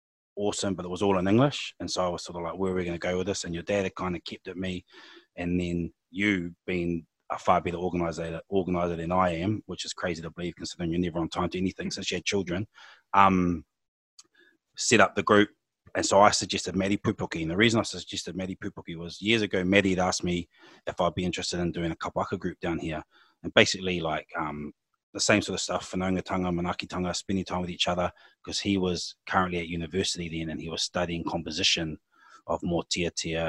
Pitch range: 85-95 Hz